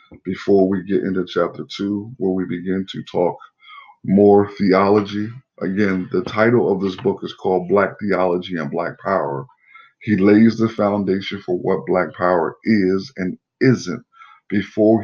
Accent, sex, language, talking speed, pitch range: American, male, English, 150 wpm, 95-115 Hz